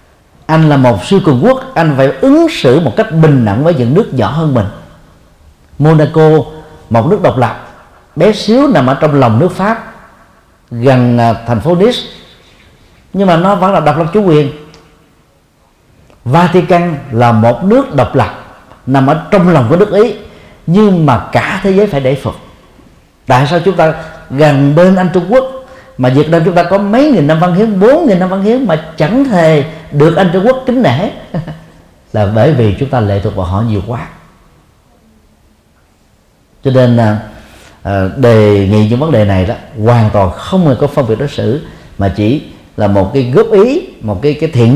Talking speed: 190 wpm